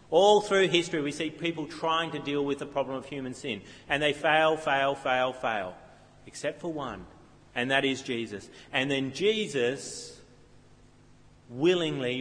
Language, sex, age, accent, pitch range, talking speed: English, male, 40-59, Australian, 145-180 Hz, 155 wpm